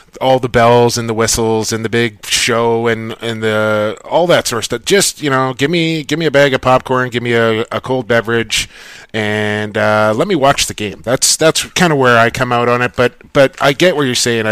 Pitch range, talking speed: 115-140 Hz, 245 wpm